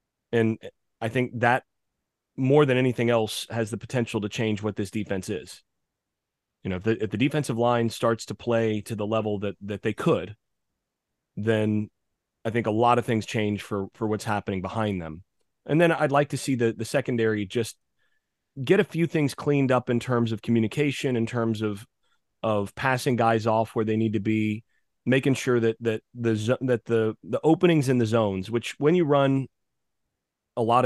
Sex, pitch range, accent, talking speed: male, 110-130 Hz, American, 195 wpm